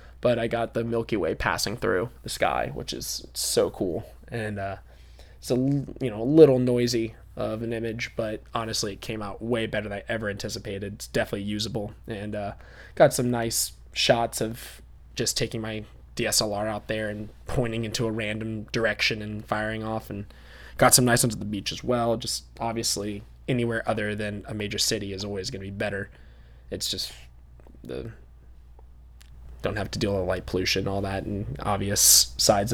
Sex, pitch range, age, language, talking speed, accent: male, 95-115 Hz, 20-39, English, 185 wpm, American